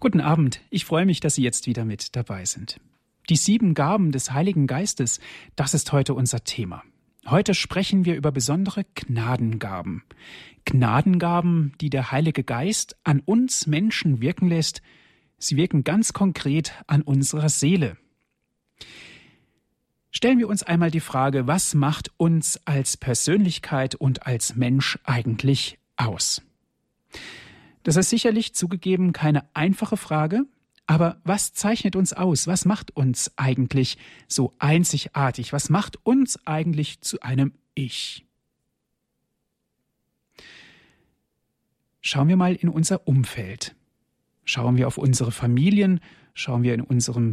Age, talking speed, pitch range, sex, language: 40-59, 130 wpm, 130-180 Hz, male, German